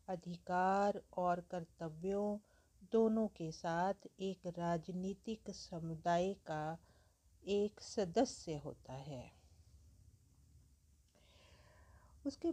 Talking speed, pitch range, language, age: 70 wpm, 165-220 Hz, English, 50-69